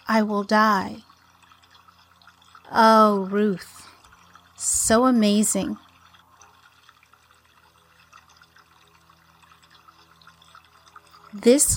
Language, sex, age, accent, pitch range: English, female, 40-59, American, 200-260 Hz